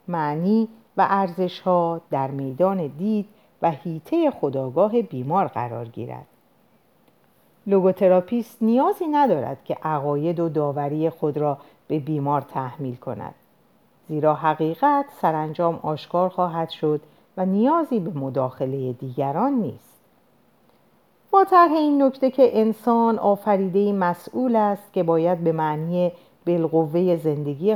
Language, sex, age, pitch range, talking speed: Persian, female, 50-69, 145-220 Hz, 110 wpm